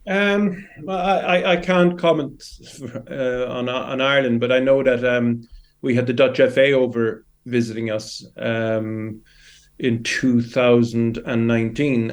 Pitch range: 115-130 Hz